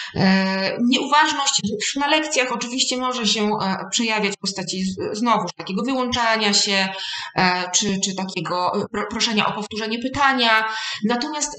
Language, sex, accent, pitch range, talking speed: Polish, female, native, 205-255 Hz, 115 wpm